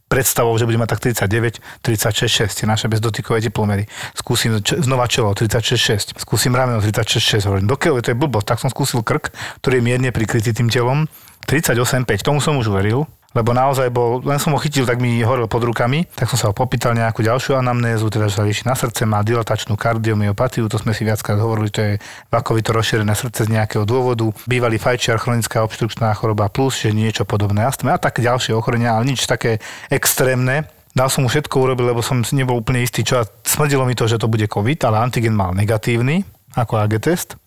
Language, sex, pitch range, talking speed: Slovak, male, 110-130 Hz, 205 wpm